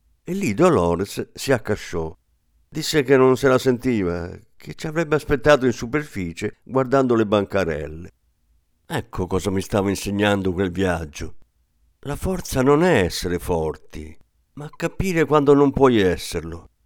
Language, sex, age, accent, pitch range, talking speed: Italian, male, 50-69, native, 85-135 Hz, 140 wpm